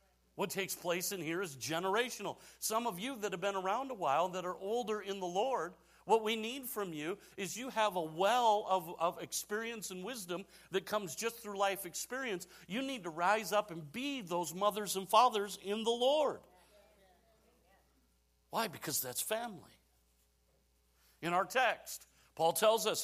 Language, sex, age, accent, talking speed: English, male, 50-69, American, 175 wpm